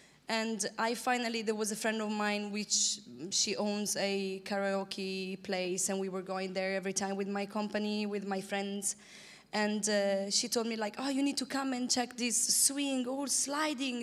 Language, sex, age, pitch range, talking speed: English, female, 20-39, 205-255 Hz, 190 wpm